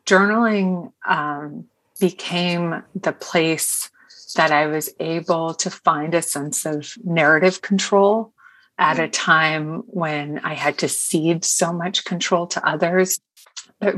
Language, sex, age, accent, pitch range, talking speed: English, female, 30-49, American, 165-190 Hz, 130 wpm